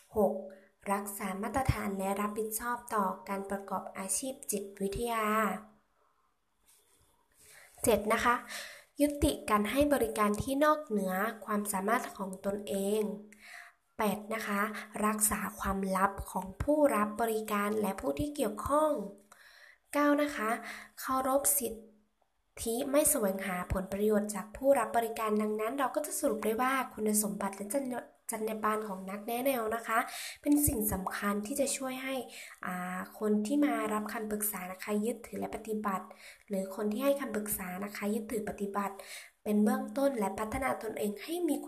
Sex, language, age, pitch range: female, Thai, 20-39, 200-240 Hz